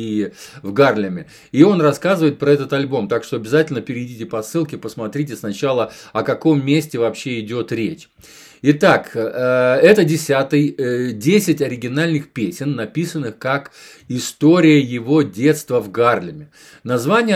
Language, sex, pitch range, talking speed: Russian, male, 125-155 Hz, 130 wpm